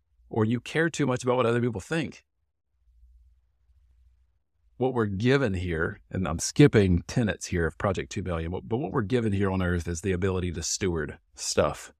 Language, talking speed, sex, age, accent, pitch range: English, 175 wpm, male, 40-59, American, 85-110 Hz